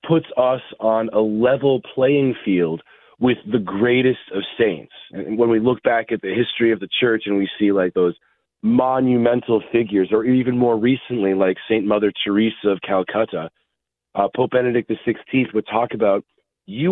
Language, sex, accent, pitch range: English, male, American, 105-130 Hz